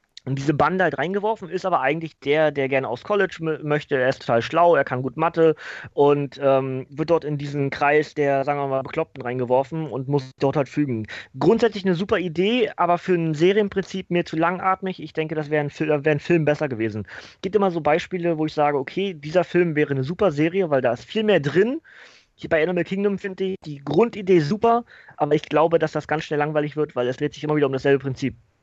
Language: German